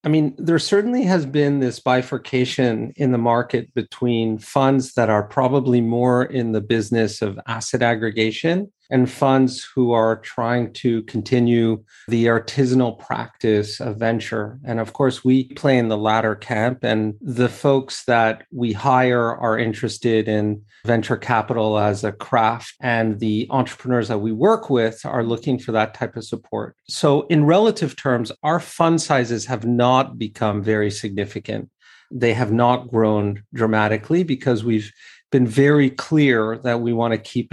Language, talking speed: English, 155 wpm